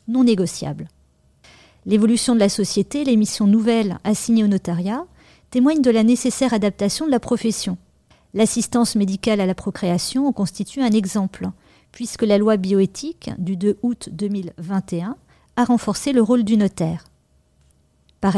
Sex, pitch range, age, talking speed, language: female, 185-235 Hz, 40-59, 145 wpm, French